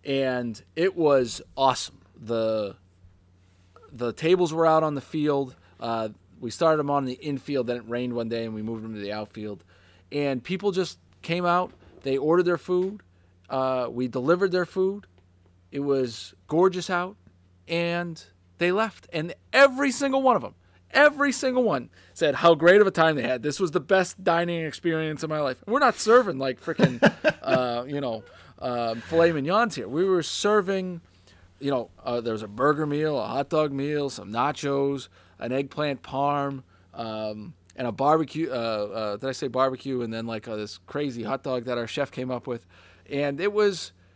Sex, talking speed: male, 185 wpm